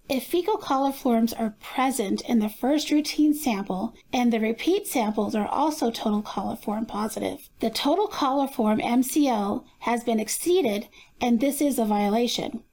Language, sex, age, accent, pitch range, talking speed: English, female, 40-59, American, 230-295 Hz, 145 wpm